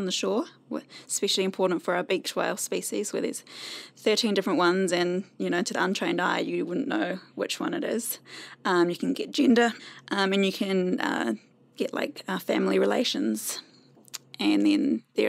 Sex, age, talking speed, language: female, 20-39, 185 wpm, English